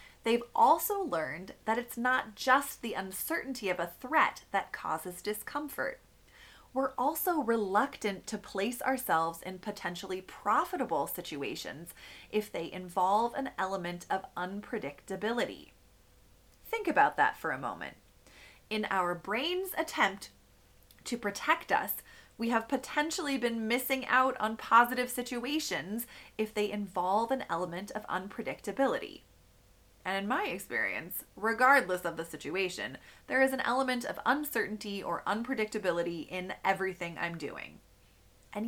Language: English